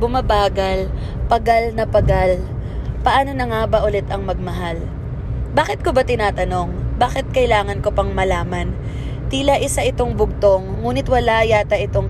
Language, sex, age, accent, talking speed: English, female, 20-39, Filipino, 140 wpm